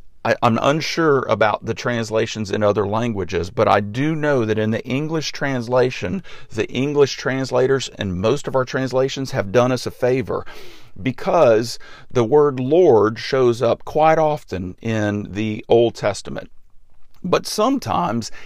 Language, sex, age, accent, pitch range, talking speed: English, male, 50-69, American, 105-130 Hz, 145 wpm